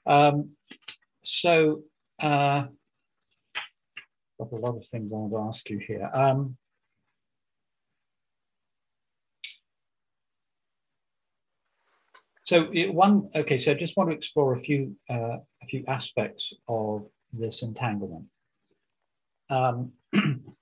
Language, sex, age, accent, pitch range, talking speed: English, male, 50-69, British, 115-145 Hz, 105 wpm